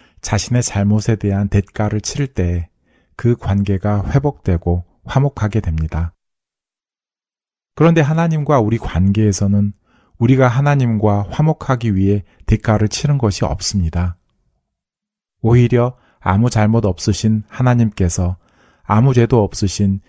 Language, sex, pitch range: Korean, male, 95-120 Hz